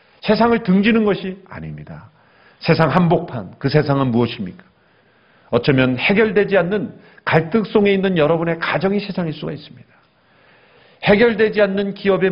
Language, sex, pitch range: Korean, male, 130-190 Hz